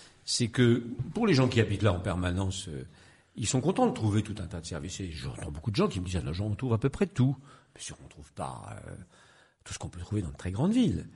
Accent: French